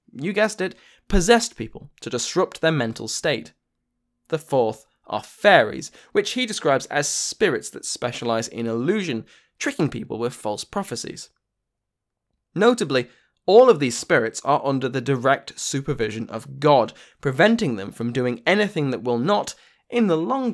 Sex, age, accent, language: male, 20-39, British, English